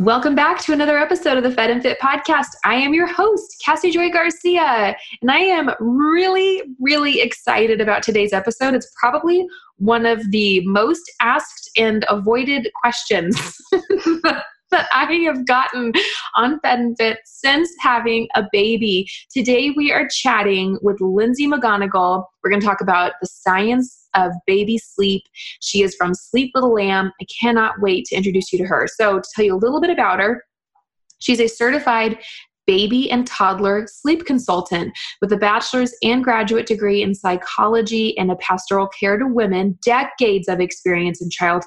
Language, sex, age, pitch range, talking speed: English, female, 20-39, 195-255 Hz, 165 wpm